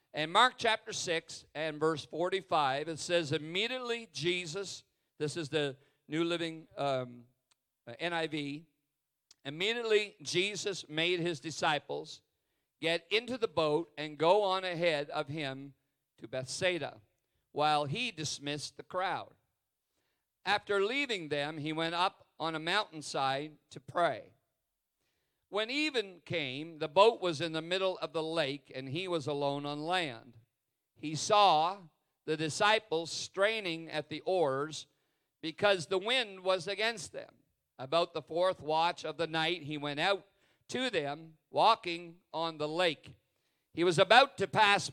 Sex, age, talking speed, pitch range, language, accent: male, 50-69, 140 wpm, 150-190 Hz, English, American